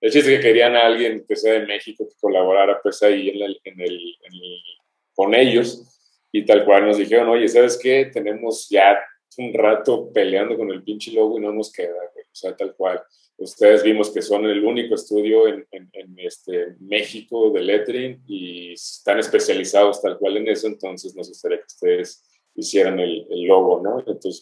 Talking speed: 200 wpm